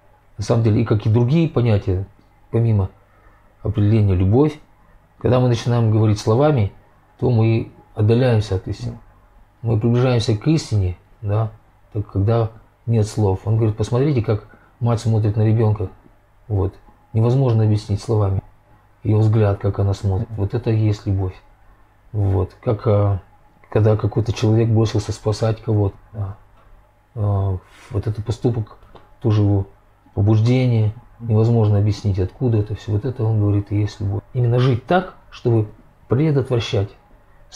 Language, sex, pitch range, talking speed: Russian, male, 105-120 Hz, 135 wpm